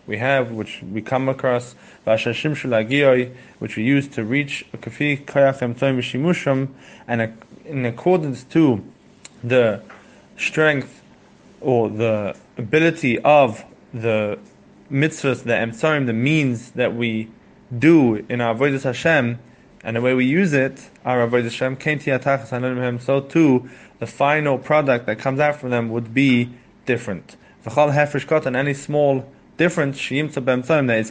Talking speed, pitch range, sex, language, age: 120 wpm, 115-140 Hz, male, English, 20-39